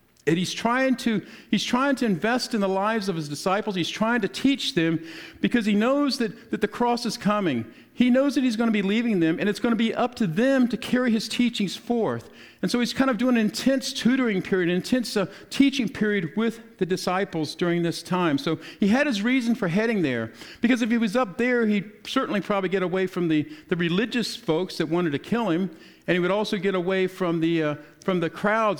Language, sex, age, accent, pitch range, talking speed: English, male, 50-69, American, 170-235 Hz, 235 wpm